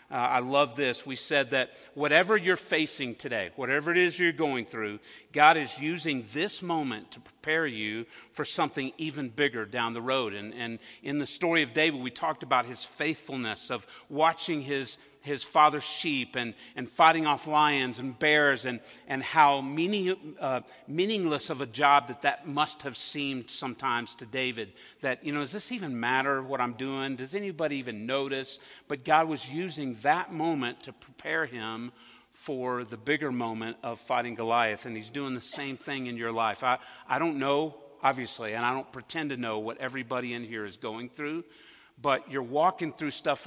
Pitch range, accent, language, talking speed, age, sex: 125-155 Hz, American, English, 190 wpm, 50-69, male